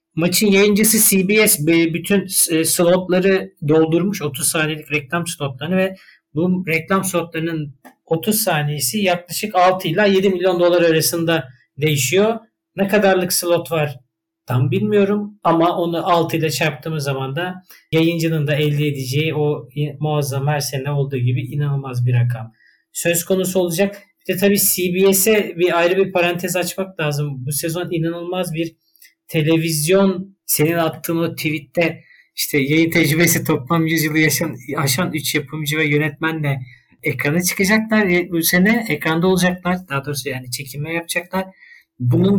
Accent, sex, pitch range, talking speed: native, male, 150-185 Hz, 130 wpm